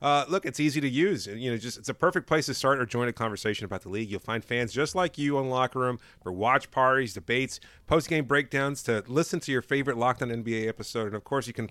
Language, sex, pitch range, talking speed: English, male, 115-145 Hz, 260 wpm